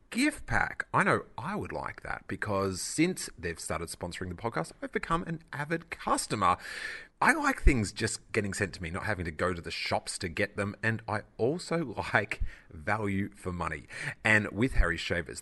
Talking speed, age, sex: 190 wpm, 30-49, male